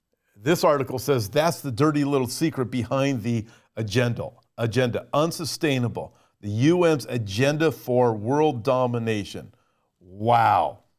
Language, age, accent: English, 50-69, American